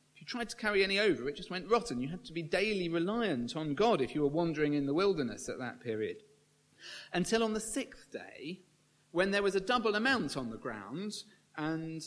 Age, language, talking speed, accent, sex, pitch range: 40-59, English, 210 wpm, British, male, 140-200 Hz